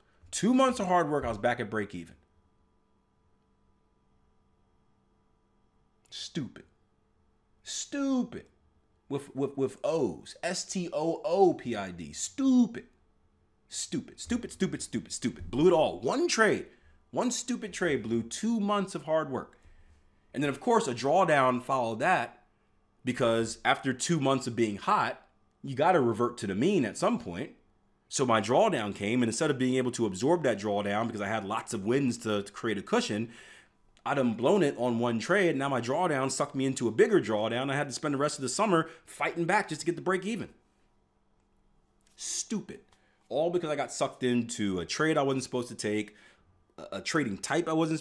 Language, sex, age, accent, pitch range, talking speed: English, male, 30-49, American, 115-165 Hz, 175 wpm